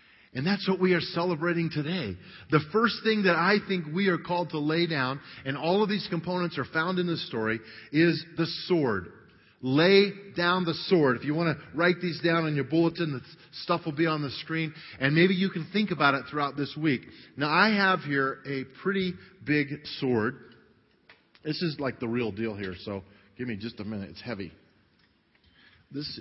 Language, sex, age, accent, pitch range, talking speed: English, male, 40-59, American, 120-170 Hz, 200 wpm